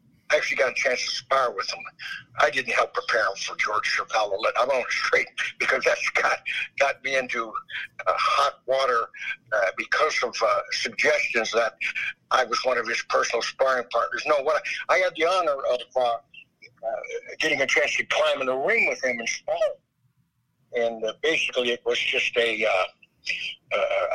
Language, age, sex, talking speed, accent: English, 60-79, male, 185 wpm, American